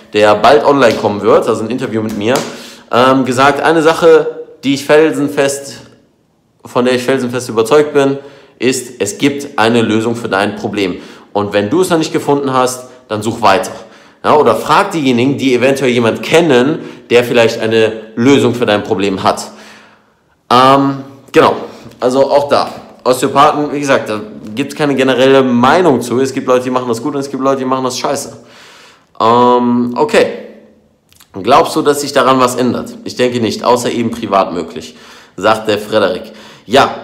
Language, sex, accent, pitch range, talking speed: German, male, German, 120-150 Hz, 165 wpm